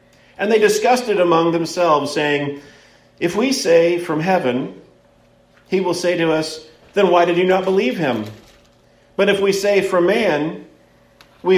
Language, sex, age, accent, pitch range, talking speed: English, male, 50-69, American, 120-190 Hz, 160 wpm